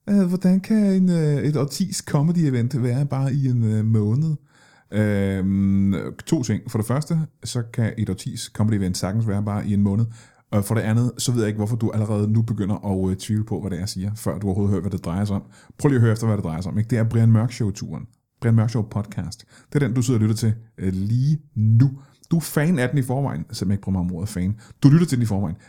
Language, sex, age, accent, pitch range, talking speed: Danish, male, 30-49, native, 100-135 Hz, 260 wpm